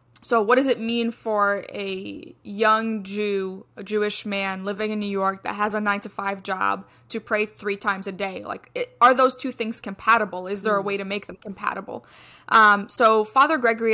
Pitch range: 200-235 Hz